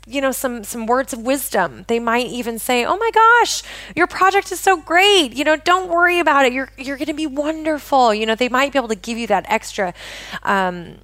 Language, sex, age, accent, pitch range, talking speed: English, female, 20-39, American, 190-245 Hz, 235 wpm